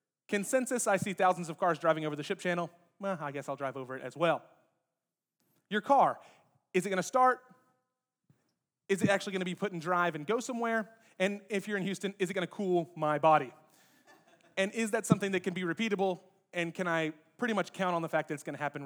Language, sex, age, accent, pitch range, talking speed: English, male, 30-49, American, 145-200 Hz, 230 wpm